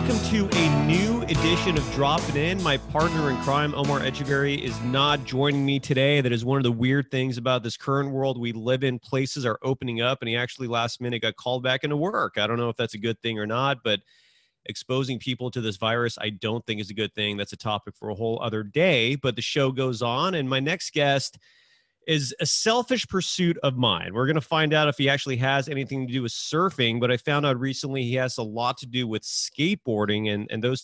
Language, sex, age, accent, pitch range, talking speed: English, male, 30-49, American, 110-140 Hz, 240 wpm